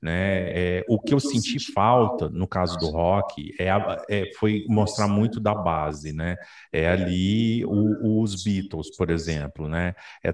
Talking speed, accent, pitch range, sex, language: 170 wpm, Brazilian, 90-125 Hz, male, Portuguese